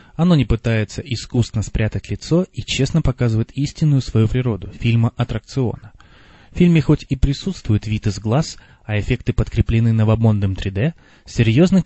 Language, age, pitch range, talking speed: Russian, 20-39, 110-135 Hz, 145 wpm